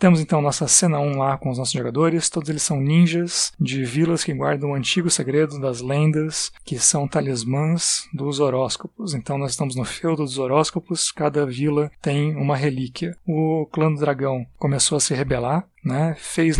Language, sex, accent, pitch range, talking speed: Portuguese, male, Brazilian, 135-165 Hz, 180 wpm